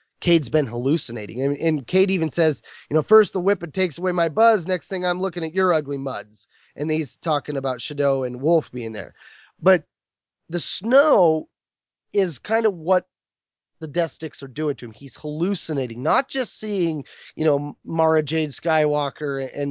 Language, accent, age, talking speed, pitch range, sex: English, American, 20-39, 185 wpm, 145-180 Hz, male